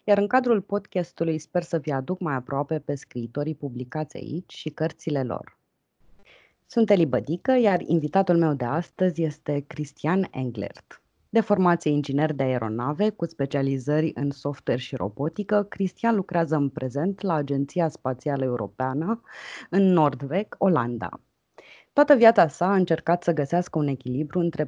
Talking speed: 145 wpm